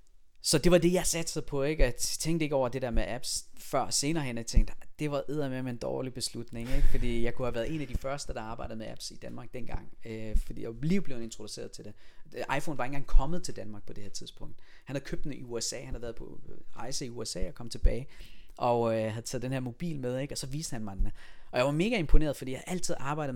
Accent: native